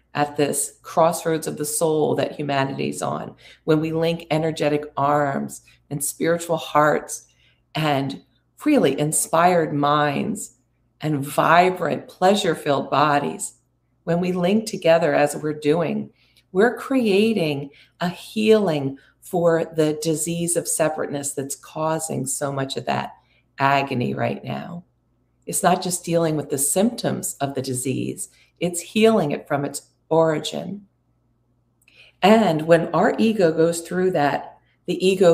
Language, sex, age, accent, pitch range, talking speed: English, female, 50-69, American, 140-175 Hz, 125 wpm